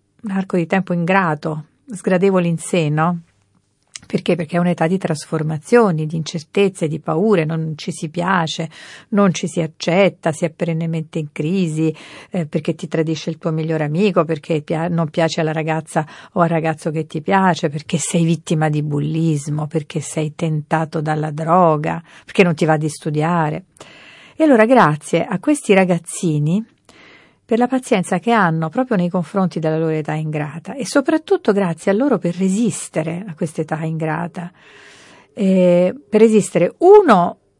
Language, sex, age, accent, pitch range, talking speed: Italian, female, 50-69, native, 160-190 Hz, 160 wpm